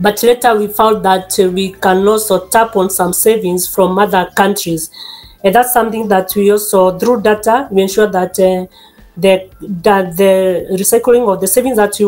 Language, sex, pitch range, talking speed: English, female, 190-220 Hz, 180 wpm